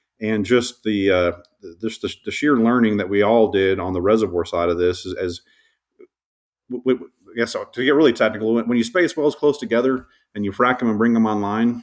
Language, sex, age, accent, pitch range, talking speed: English, male, 30-49, American, 100-125 Hz, 215 wpm